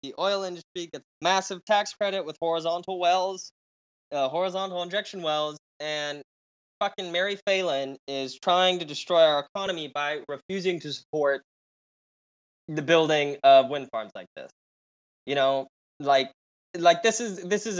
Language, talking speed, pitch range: English, 145 wpm, 140-185 Hz